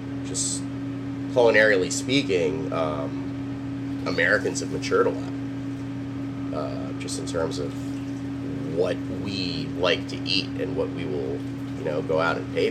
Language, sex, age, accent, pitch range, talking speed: English, male, 30-49, American, 135-140 Hz, 135 wpm